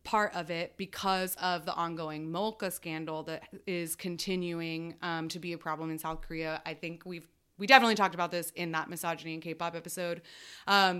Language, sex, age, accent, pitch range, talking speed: English, female, 20-39, American, 165-210 Hz, 190 wpm